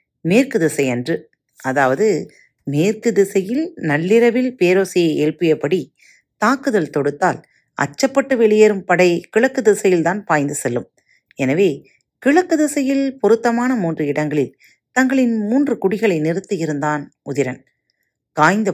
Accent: native